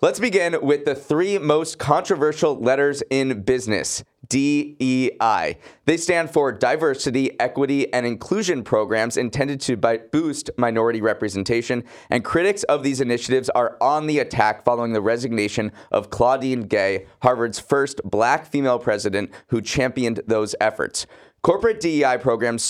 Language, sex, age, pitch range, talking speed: English, male, 30-49, 115-140 Hz, 135 wpm